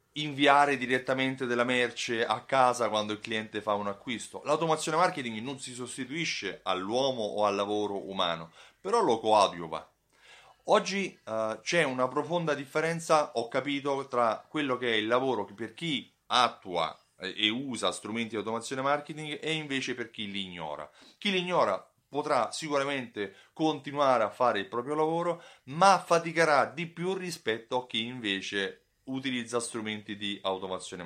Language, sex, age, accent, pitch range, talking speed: Italian, male, 30-49, native, 110-145 Hz, 150 wpm